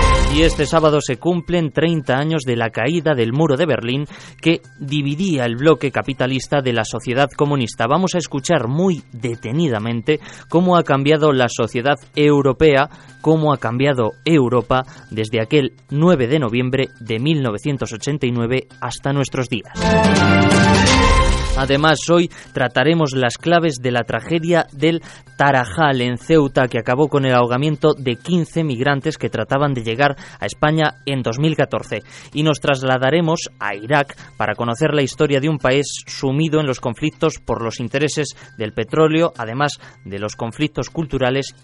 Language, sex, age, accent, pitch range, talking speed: Spanish, male, 20-39, Spanish, 120-155 Hz, 145 wpm